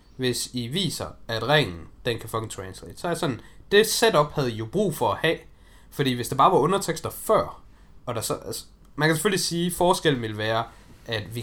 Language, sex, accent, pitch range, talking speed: Danish, male, native, 105-150 Hz, 225 wpm